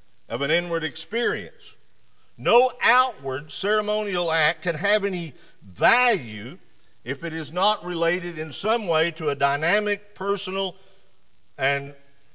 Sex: male